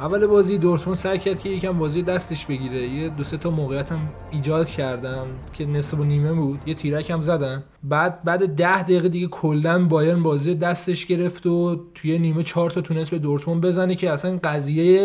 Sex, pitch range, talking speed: male, 145-180 Hz, 195 wpm